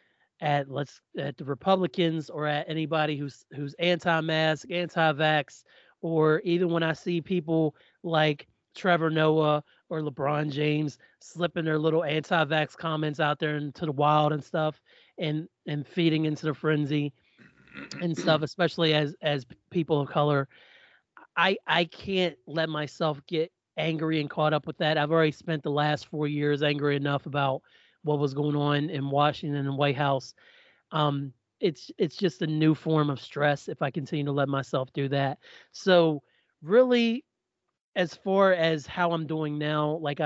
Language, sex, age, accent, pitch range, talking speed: English, male, 30-49, American, 145-165 Hz, 165 wpm